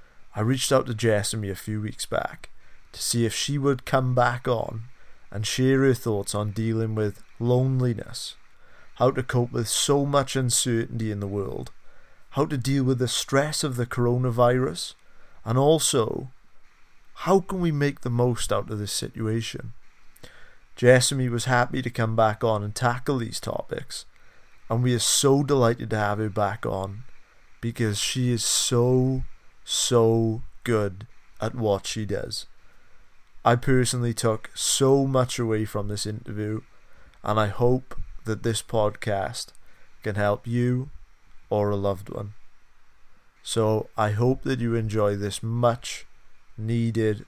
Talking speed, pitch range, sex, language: 150 wpm, 105-125 Hz, male, English